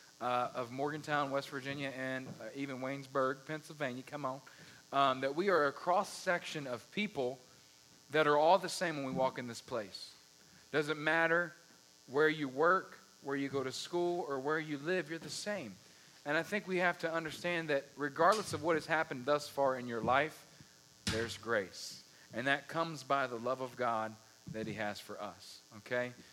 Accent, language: American, English